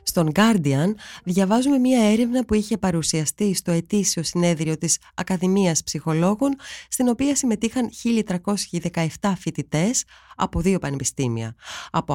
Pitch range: 160-225 Hz